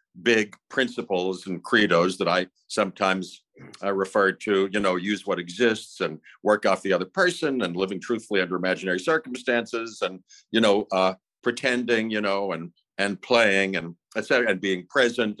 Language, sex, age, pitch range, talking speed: English, male, 60-79, 100-135 Hz, 165 wpm